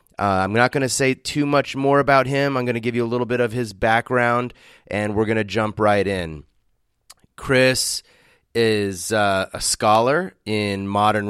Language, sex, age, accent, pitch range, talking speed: English, male, 30-49, American, 100-120 Hz, 185 wpm